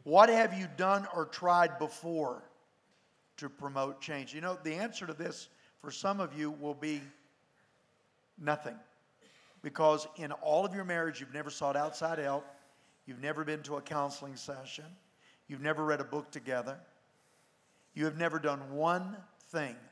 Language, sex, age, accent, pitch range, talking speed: English, male, 50-69, American, 150-200 Hz, 160 wpm